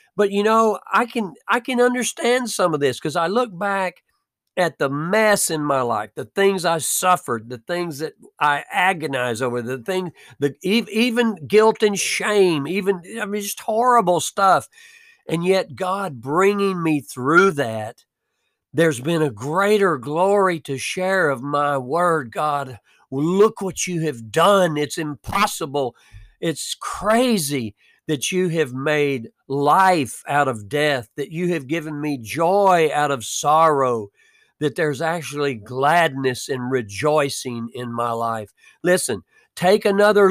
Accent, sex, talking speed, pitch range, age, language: American, male, 150 wpm, 140-195 Hz, 50-69, English